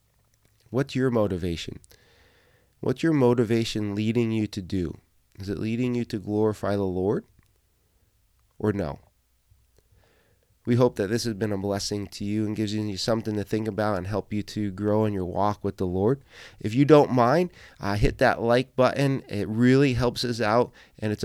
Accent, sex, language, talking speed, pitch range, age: American, male, English, 180 wpm, 105-125 Hz, 30-49